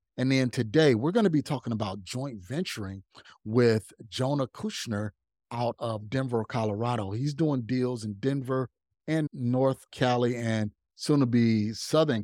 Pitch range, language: 110-145 Hz, English